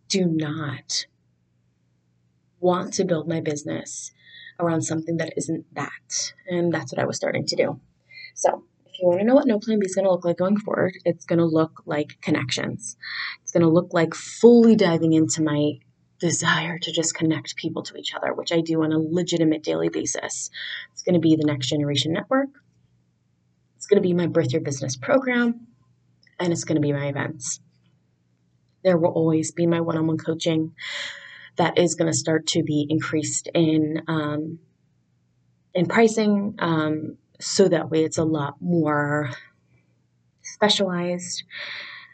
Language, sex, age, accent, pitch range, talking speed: English, female, 20-39, American, 150-180 Hz, 170 wpm